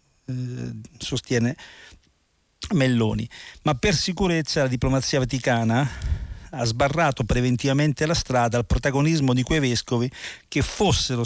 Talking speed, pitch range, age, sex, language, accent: 105 wpm, 115-140 Hz, 50-69, male, Italian, native